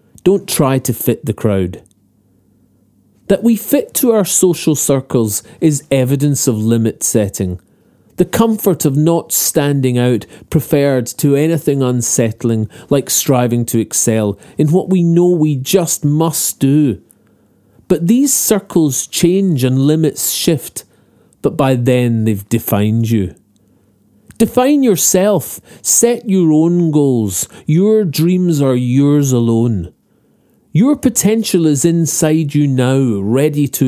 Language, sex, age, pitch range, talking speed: English, male, 40-59, 120-175 Hz, 130 wpm